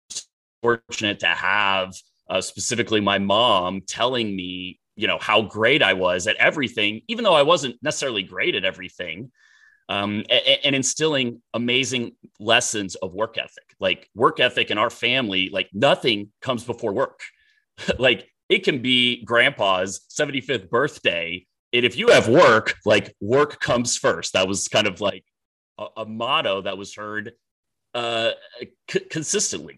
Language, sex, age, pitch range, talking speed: English, male, 30-49, 100-130 Hz, 150 wpm